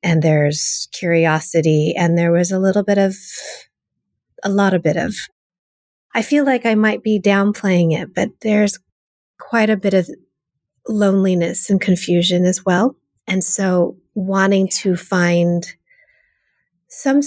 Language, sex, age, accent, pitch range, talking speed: English, female, 30-49, American, 160-205 Hz, 140 wpm